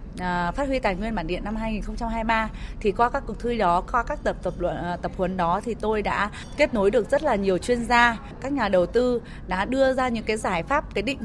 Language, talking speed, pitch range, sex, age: Vietnamese, 245 wpm, 185-245 Hz, female, 20-39